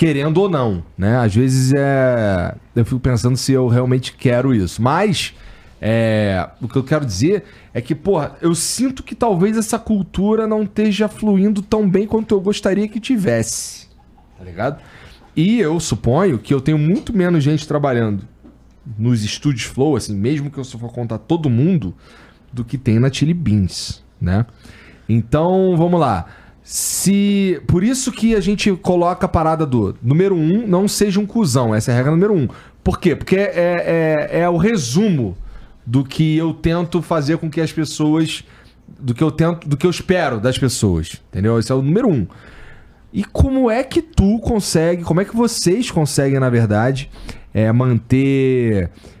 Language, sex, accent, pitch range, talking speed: Portuguese, male, Brazilian, 115-185 Hz, 175 wpm